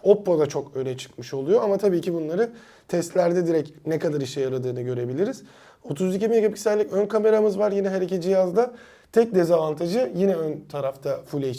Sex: male